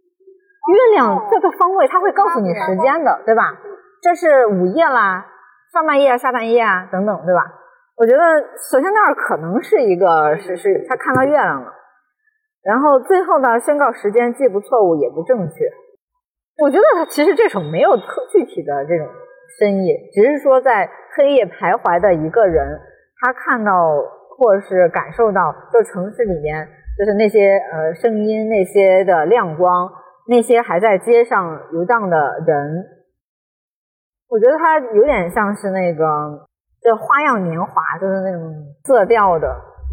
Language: Chinese